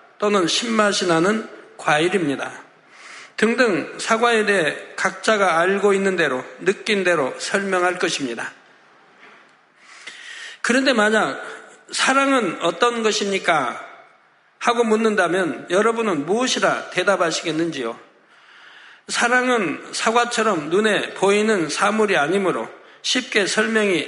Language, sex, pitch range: Korean, male, 190-235 Hz